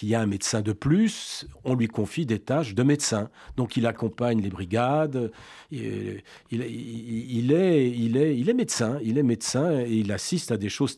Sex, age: male, 40-59